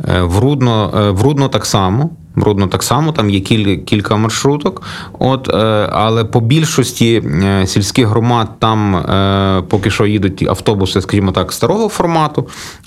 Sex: male